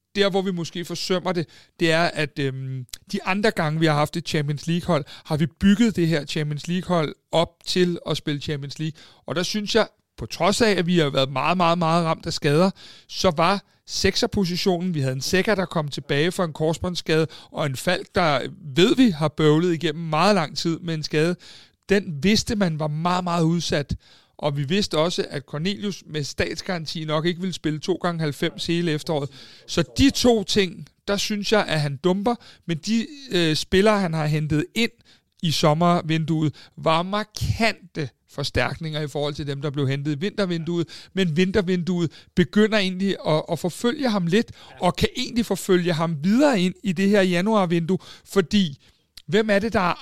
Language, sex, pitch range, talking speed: Danish, male, 155-195 Hz, 190 wpm